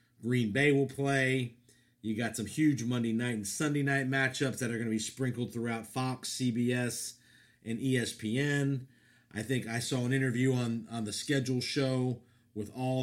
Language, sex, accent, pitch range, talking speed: English, male, American, 115-130 Hz, 175 wpm